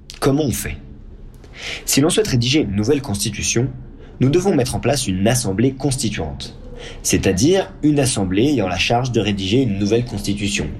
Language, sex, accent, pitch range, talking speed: French, male, French, 95-125 Hz, 160 wpm